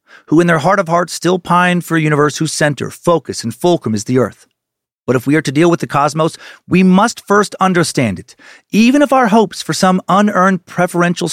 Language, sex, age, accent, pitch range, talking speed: English, male, 40-59, American, 140-190 Hz, 215 wpm